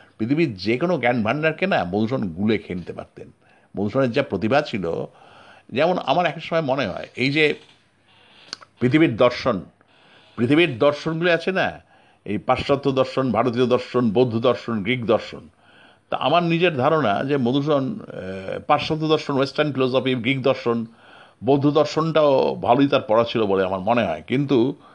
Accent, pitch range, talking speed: native, 120-155 Hz, 145 wpm